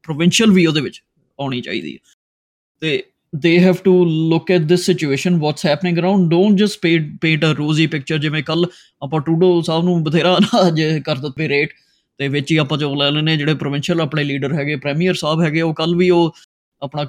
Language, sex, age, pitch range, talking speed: Punjabi, male, 20-39, 150-180 Hz, 205 wpm